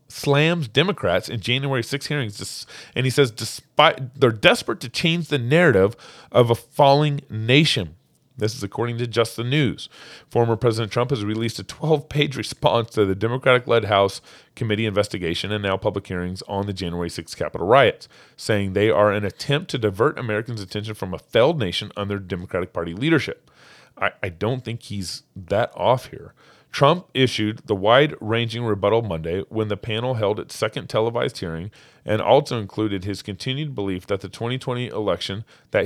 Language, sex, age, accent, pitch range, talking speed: English, male, 30-49, American, 100-125 Hz, 170 wpm